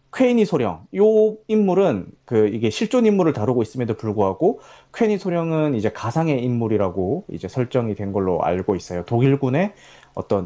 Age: 30-49